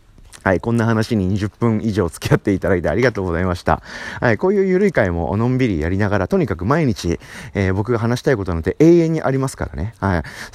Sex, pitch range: male, 85-120 Hz